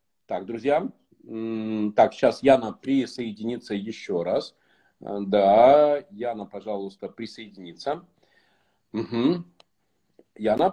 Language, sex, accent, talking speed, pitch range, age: Russian, male, native, 75 wpm, 115-170 Hz, 40-59